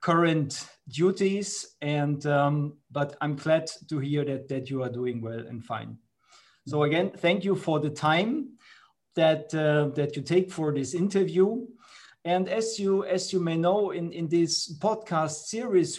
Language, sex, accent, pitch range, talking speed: English, male, German, 150-180 Hz, 165 wpm